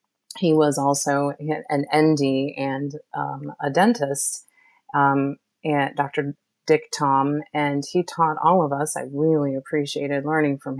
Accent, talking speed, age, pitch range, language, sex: American, 140 wpm, 30-49, 145-180 Hz, English, female